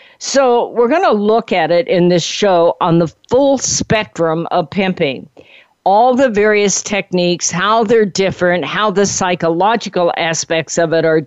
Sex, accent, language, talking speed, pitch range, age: female, American, English, 160 wpm, 170-210 Hz, 50-69